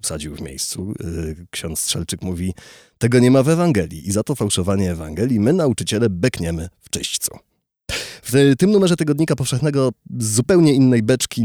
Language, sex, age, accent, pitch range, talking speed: Polish, male, 30-49, native, 90-115 Hz, 155 wpm